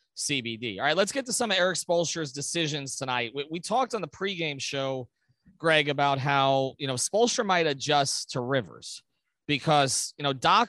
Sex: male